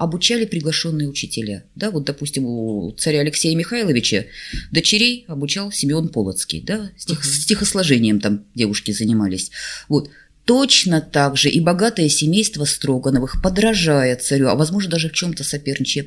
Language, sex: Russian, female